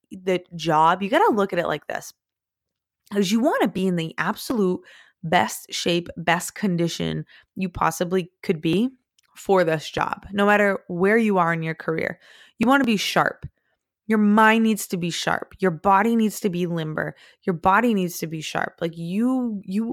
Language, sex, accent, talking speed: English, female, American, 190 wpm